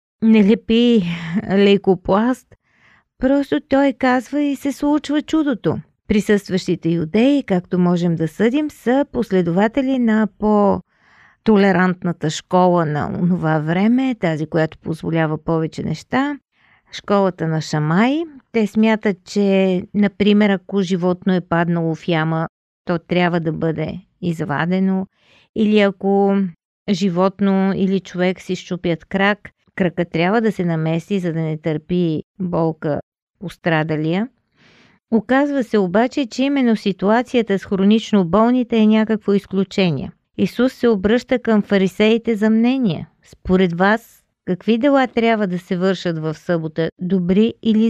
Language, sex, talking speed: Bulgarian, female, 120 wpm